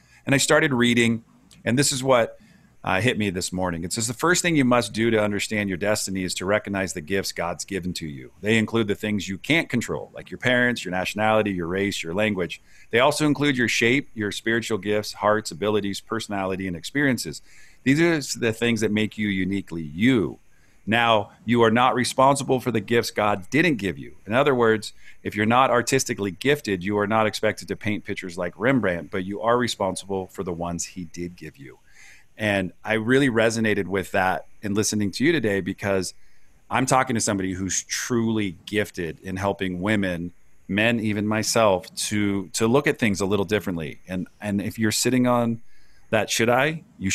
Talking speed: 195 wpm